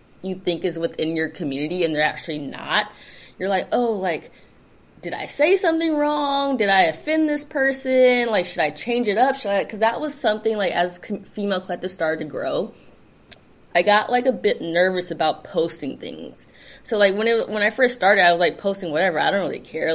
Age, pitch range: 20-39, 165-215 Hz